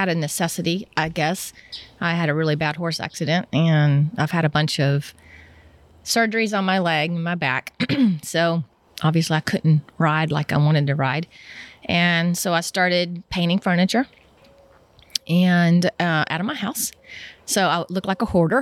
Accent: American